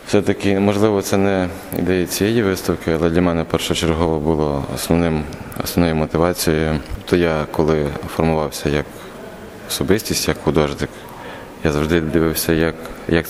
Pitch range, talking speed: 80-100 Hz, 125 wpm